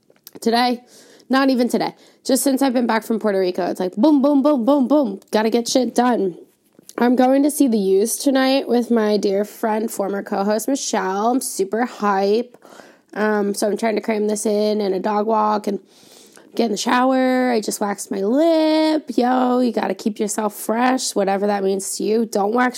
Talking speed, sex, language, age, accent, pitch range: 200 wpm, female, English, 20-39, American, 205-265 Hz